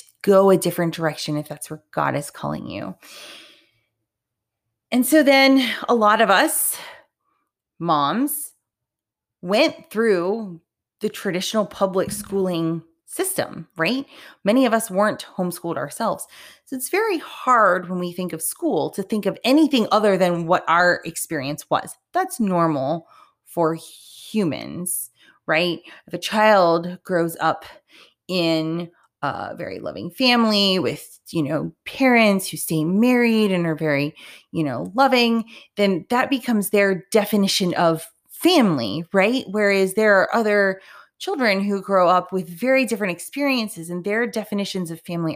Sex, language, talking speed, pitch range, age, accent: female, English, 140 wpm, 170-240 Hz, 30-49, American